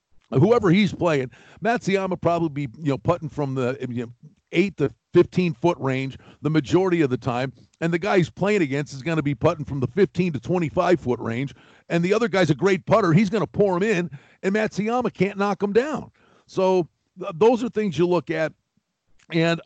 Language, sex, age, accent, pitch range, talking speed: English, male, 50-69, American, 145-200 Hz, 205 wpm